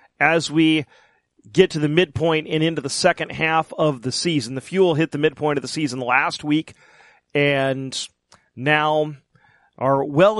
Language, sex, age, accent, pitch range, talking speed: English, male, 40-59, American, 135-170 Hz, 160 wpm